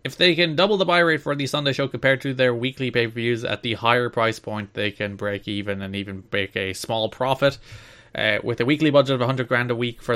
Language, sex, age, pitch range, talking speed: English, male, 20-39, 100-130 Hz, 250 wpm